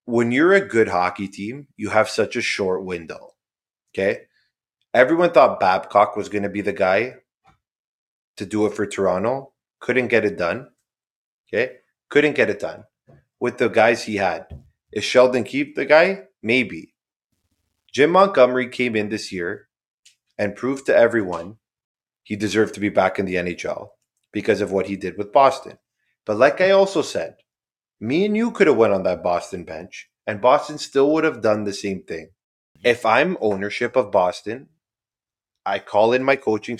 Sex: male